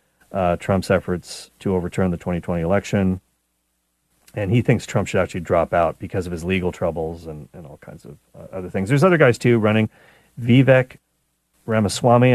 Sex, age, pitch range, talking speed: male, 40-59, 95-115 Hz, 175 wpm